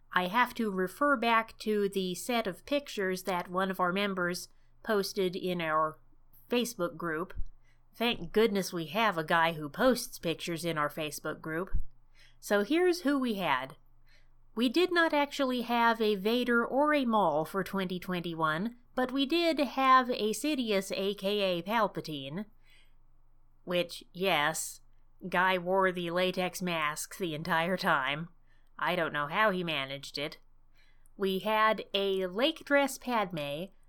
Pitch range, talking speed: 165-225 Hz, 145 wpm